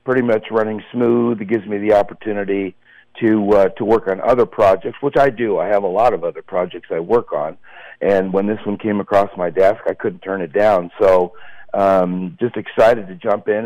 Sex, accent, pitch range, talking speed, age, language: male, American, 100-120 Hz, 215 wpm, 50-69, English